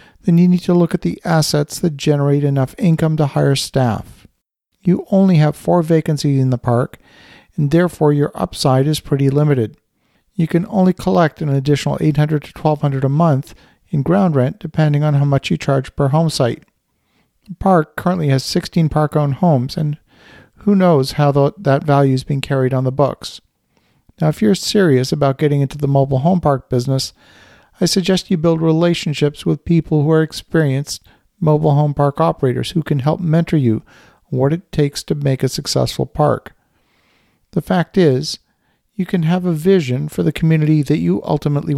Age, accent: 50-69, American